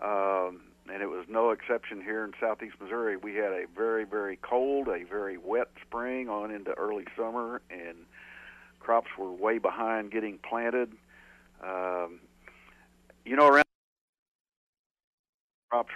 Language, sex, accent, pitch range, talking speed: English, male, American, 95-120 Hz, 135 wpm